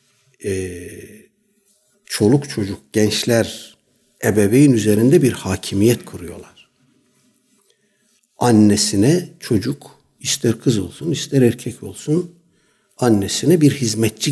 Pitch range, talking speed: 100-145 Hz, 85 wpm